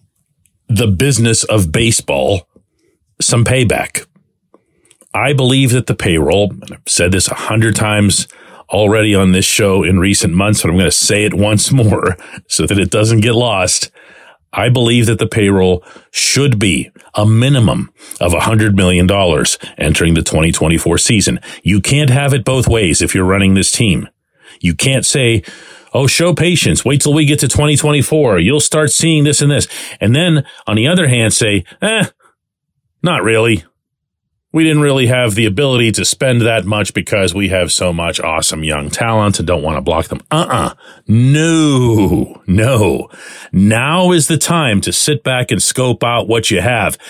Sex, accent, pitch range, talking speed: male, American, 95-135 Hz, 175 wpm